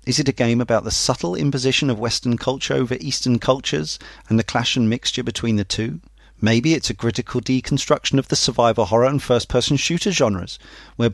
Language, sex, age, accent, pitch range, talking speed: English, male, 40-59, British, 110-135 Hz, 195 wpm